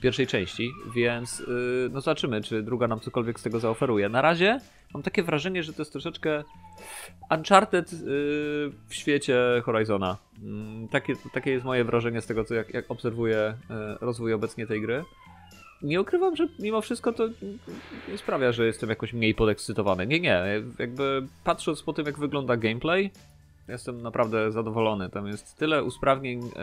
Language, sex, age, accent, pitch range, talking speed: Polish, male, 30-49, native, 110-140 Hz, 150 wpm